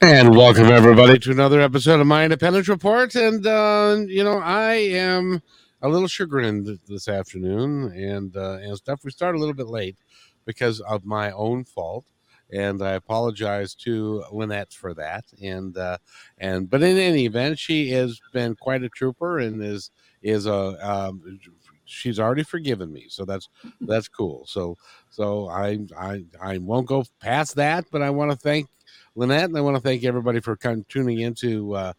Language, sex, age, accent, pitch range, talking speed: English, male, 50-69, American, 95-140 Hz, 180 wpm